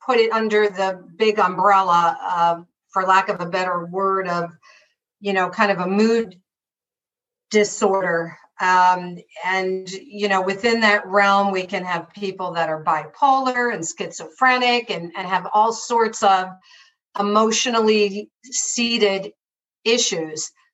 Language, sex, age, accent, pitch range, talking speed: English, female, 50-69, American, 195-235 Hz, 135 wpm